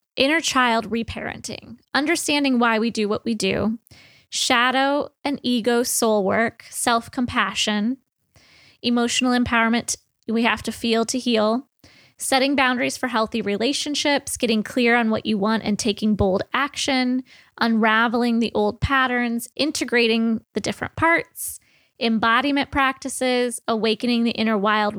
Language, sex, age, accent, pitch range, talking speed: English, female, 20-39, American, 215-260 Hz, 130 wpm